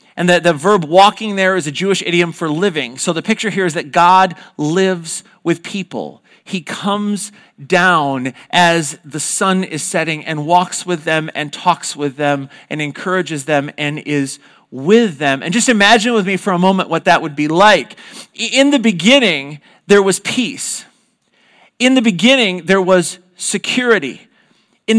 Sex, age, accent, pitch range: male, 40-59, American, 175-225 Hz